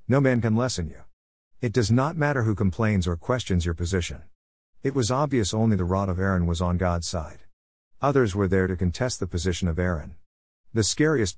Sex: male